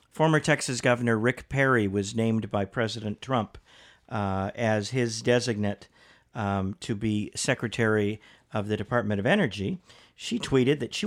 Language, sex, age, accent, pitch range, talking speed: English, male, 50-69, American, 110-135 Hz, 145 wpm